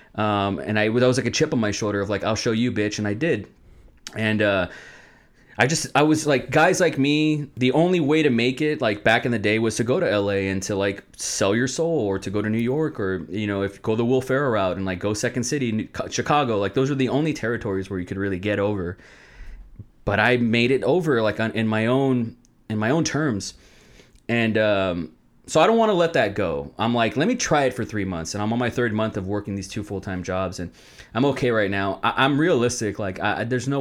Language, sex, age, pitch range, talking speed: English, male, 30-49, 100-130 Hz, 250 wpm